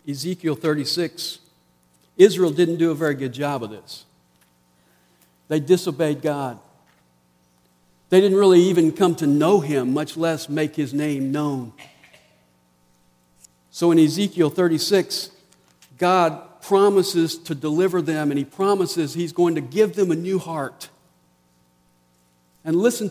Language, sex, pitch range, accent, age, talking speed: English, male, 130-180 Hz, American, 50-69, 130 wpm